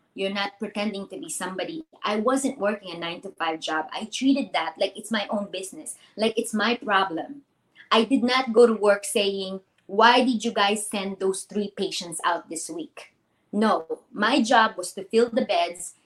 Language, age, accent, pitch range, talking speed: English, 20-39, Filipino, 190-235 Hz, 185 wpm